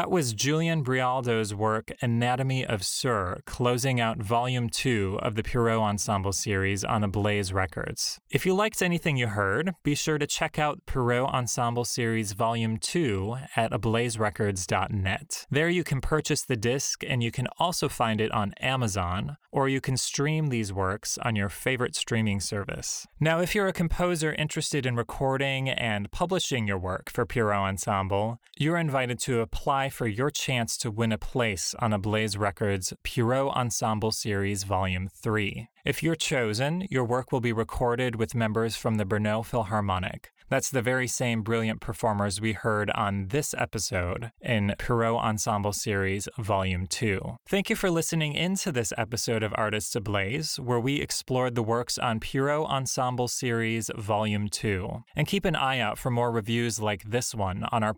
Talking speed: 170 wpm